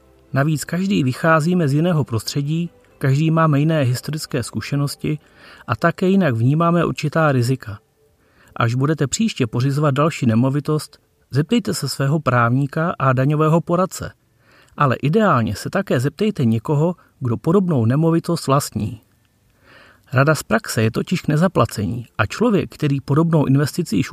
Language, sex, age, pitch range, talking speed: Czech, male, 40-59, 125-165 Hz, 130 wpm